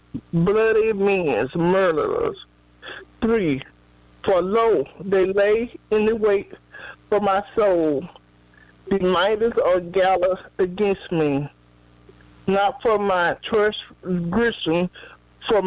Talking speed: 95 wpm